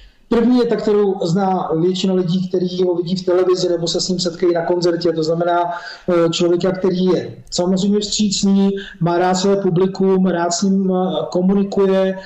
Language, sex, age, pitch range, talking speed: Slovak, male, 40-59, 175-200 Hz, 165 wpm